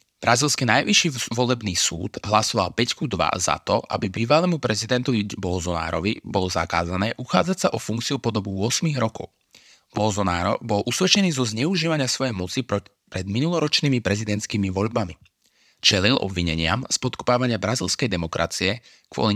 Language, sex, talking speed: Slovak, male, 120 wpm